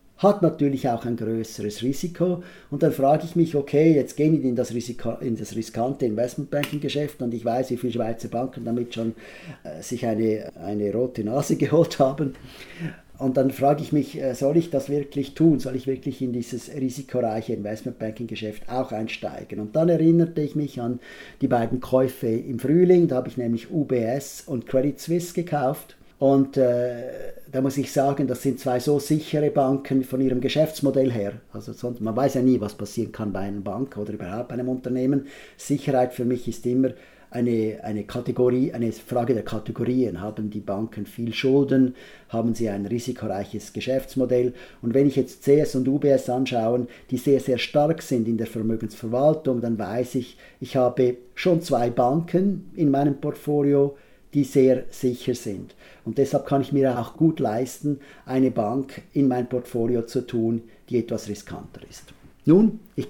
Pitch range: 115-140 Hz